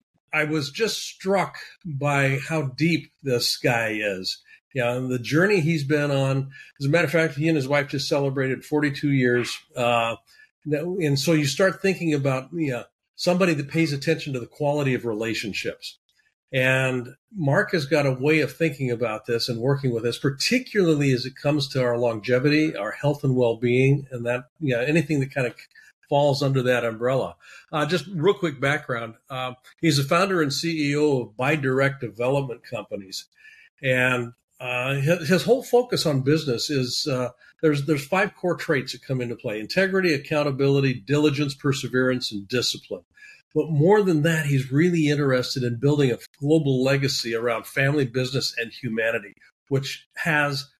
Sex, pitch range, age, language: male, 125-160 Hz, 50-69, English